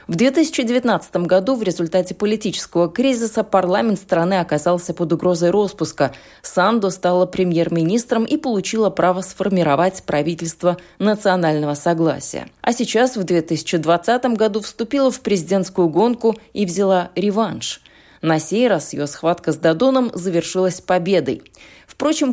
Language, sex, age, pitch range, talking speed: Russian, female, 20-39, 170-220 Hz, 120 wpm